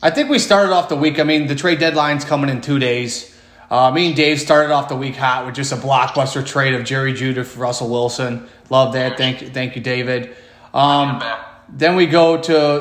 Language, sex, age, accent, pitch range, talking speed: English, male, 30-49, American, 130-155 Hz, 225 wpm